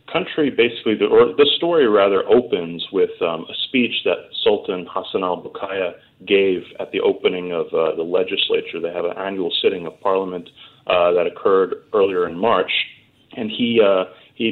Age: 30-49